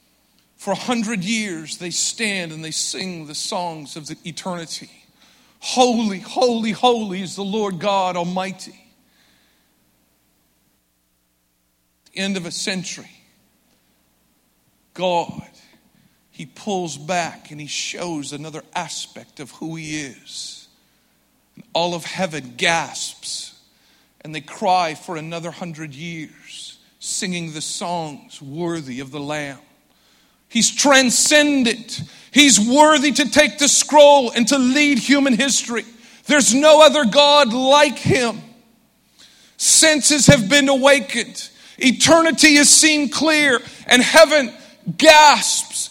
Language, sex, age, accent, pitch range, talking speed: English, male, 50-69, American, 175-265 Hz, 115 wpm